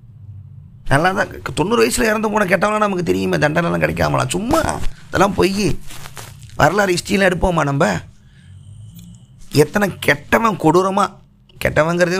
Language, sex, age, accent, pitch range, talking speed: Tamil, male, 20-39, native, 145-195 Hz, 110 wpm